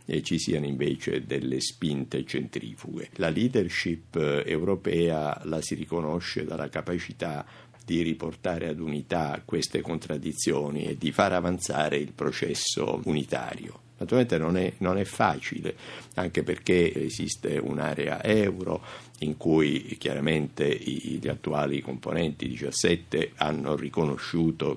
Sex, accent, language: male, native, Italian